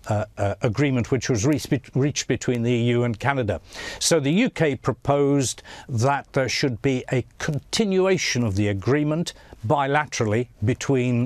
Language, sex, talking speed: English, male, 140 wpm